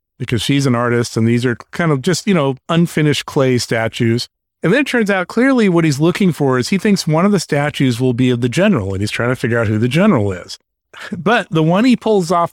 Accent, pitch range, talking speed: American, 120-175 Hz, 255 wpm